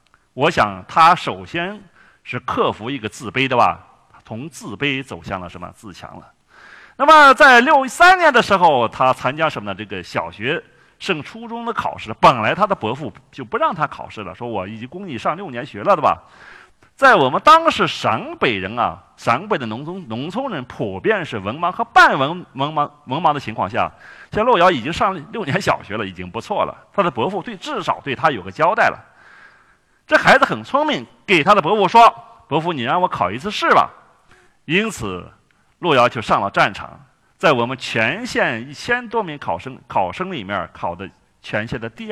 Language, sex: Chinese, male